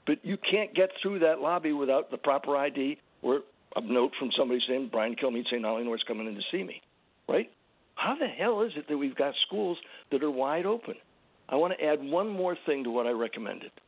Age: 60-79